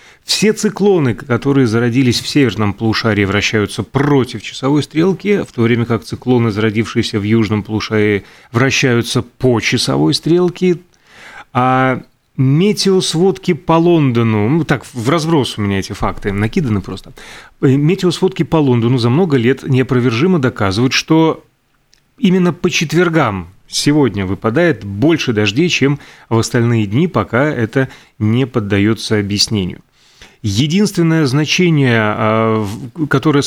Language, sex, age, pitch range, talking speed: Russian, male, 30-49, 115-150 Hz, 120 wpm